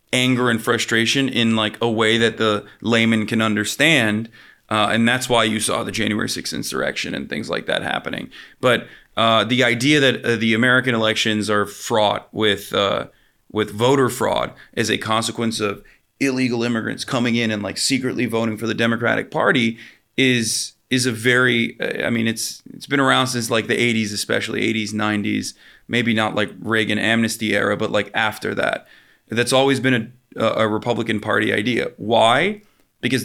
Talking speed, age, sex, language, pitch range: 175 wpm, 30-49, male, English, 110-125 Hz